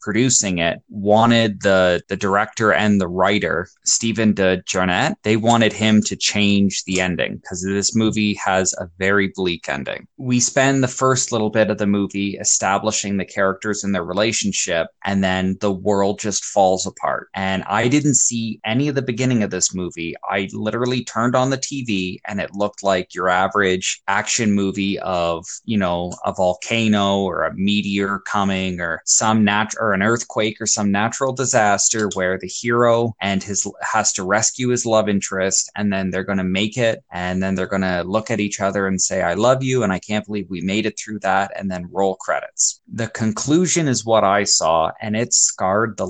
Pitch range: 95-110 Hz